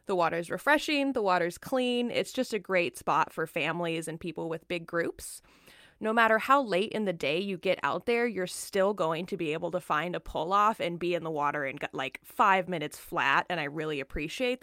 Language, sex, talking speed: English, female, 225 wpm